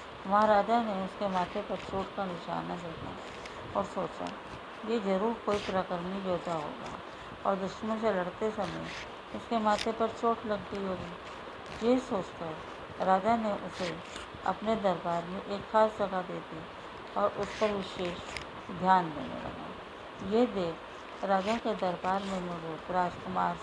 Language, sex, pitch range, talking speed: Hindi, female, 185-220 Hz, 145 wpm